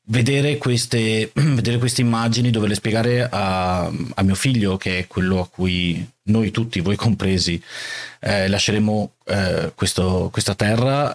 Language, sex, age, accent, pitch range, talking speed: Italian, male, 30-49, native, 95-120 Hz, 130 wpm